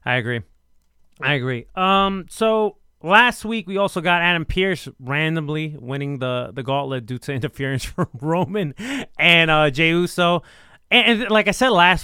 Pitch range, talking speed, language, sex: 135-175 Hz, 165 wpm, English, male